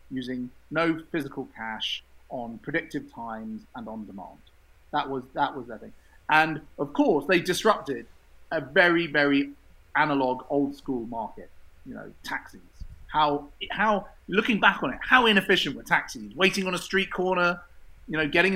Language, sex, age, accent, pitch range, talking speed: English, male, 30-49, British, 130-175 Hz, 160 wpm